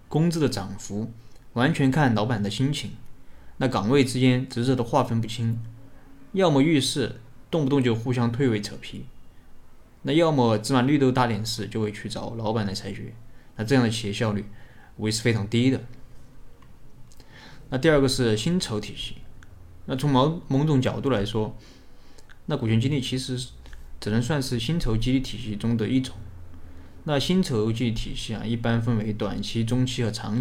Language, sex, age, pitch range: Chinese, male, 20-39, 110-135 Hz